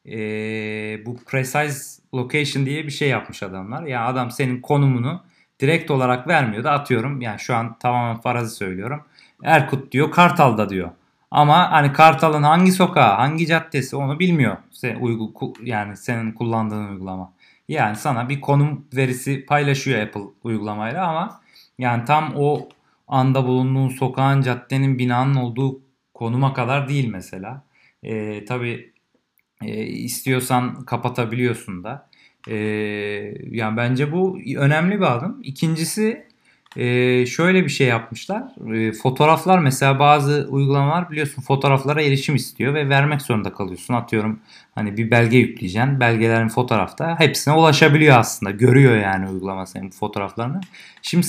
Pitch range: 115-145 Hz